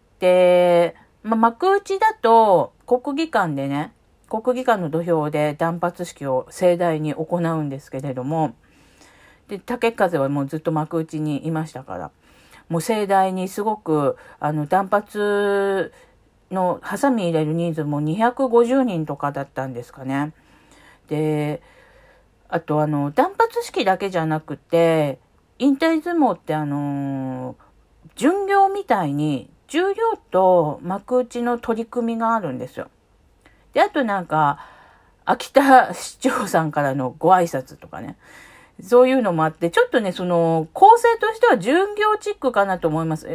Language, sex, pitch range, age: Japanese, female, 155-240 Hz, 50-69